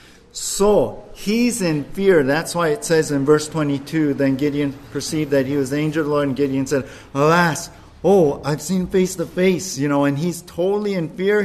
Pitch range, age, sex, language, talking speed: 135-180 Hz, 50-69, male, English, 205 wpm